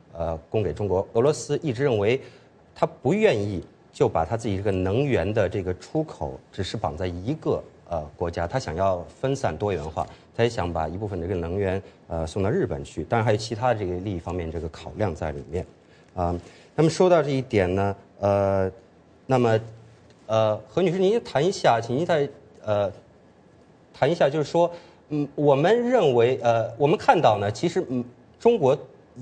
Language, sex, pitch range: English, male, 90-125 Hz